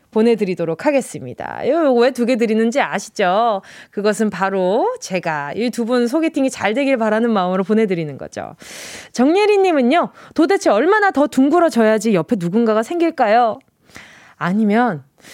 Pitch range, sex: 210-320 Hz, female